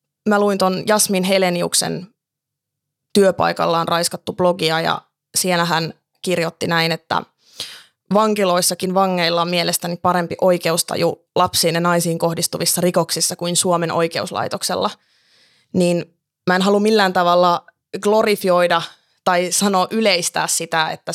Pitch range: 155-185 Hz